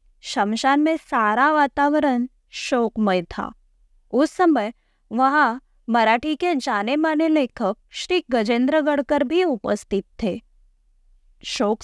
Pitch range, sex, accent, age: 235-315 Hz, female, native, 20-39